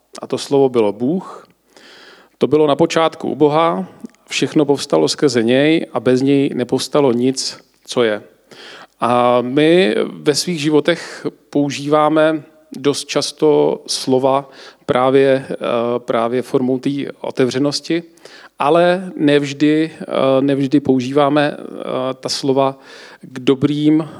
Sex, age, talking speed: male, 40-59, 110 wpm